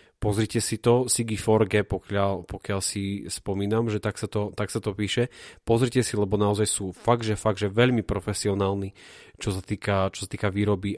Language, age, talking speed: Slovak, 30-49, 175 wpm